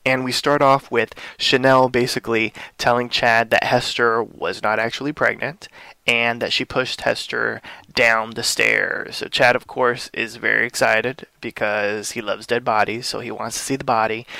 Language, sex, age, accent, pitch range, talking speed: English, male, 20-39, American, 110-125 Hz, 175 wpm